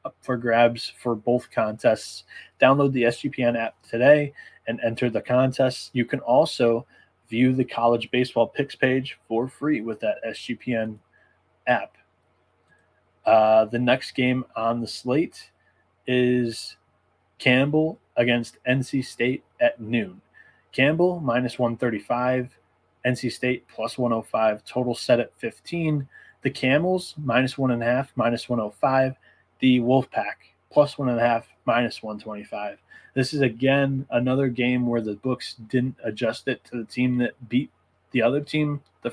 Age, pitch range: 20-39, 115-130 Hz